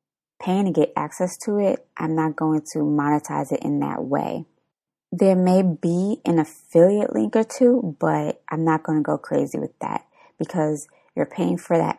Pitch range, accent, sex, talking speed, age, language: 155-185 Hz, American, female, 185 wpm, 20-39, English